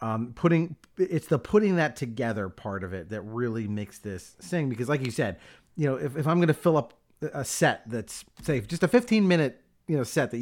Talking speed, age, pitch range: 225 wpm, 30-49, 120-155 Hz